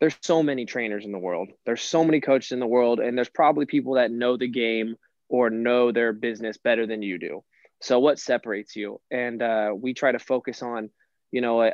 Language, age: English, 20-39